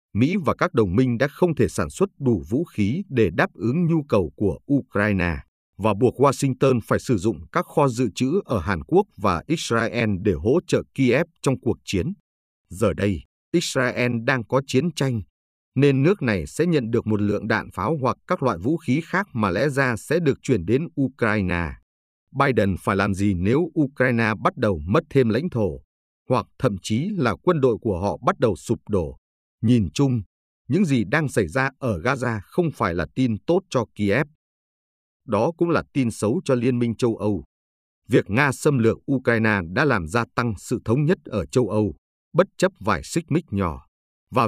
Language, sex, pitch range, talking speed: Vietnamese, male, 100-135 Hz, 195 wpm